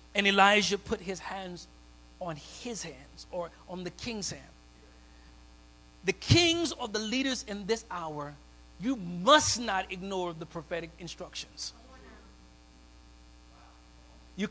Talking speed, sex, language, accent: 120 wpm, male, English, American